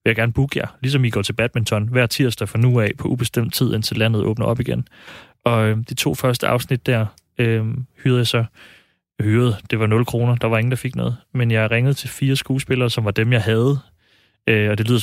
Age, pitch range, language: 30-49, 110-125 Hz, Danish